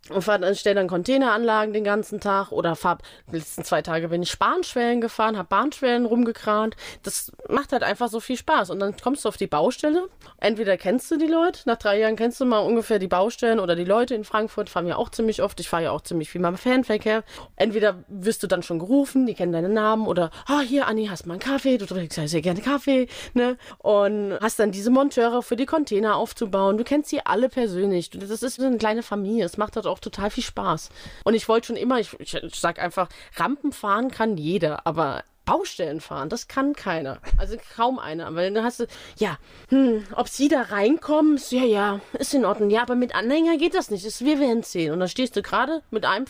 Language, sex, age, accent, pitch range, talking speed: German, female, 20-39, German, 195-255 Hz, 230 wpm